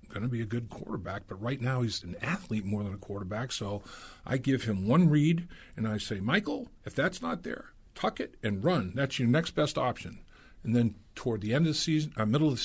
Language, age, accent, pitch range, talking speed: English, 50-69, American, 105-130 Hz, 235 wpm